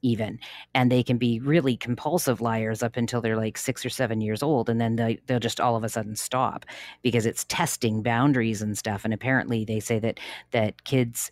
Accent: American